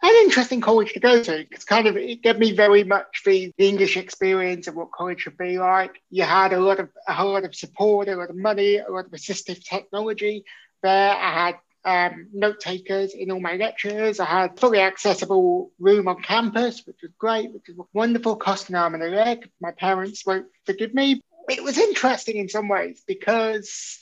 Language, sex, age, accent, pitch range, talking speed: English, male, 30-49, British, 185-230 Hz, 200 wpm